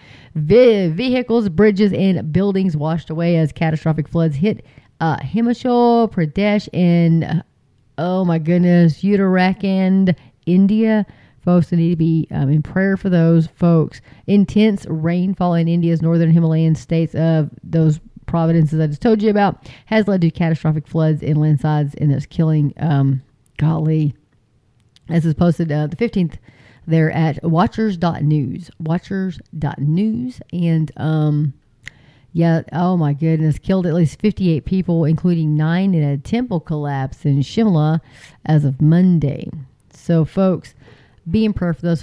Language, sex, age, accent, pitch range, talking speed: English, female, 30-49, American, 150-180 Hz, 140 wpm